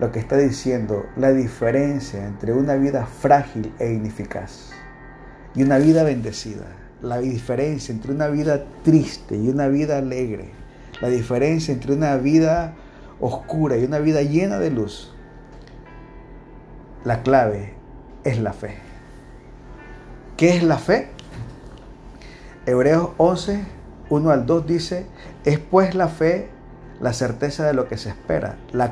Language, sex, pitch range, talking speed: Spanish, male, 120-150 Hz, 135 wpm